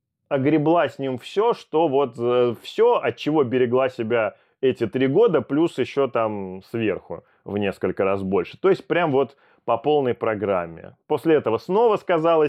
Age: 20-39